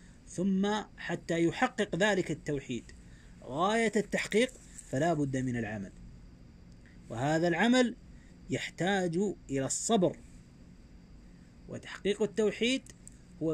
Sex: male